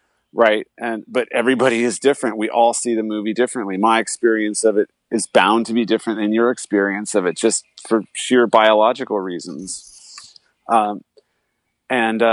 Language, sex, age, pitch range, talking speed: English, male, 40-59, 105-125 Hz, 160 wpm